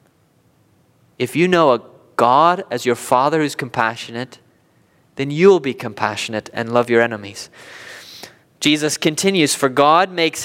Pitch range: 160-235 Hz